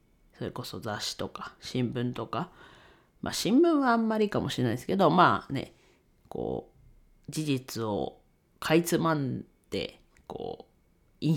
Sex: female